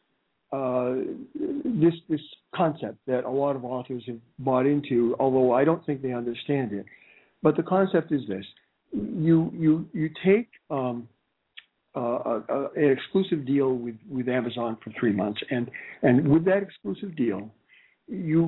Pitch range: 130-160 Hz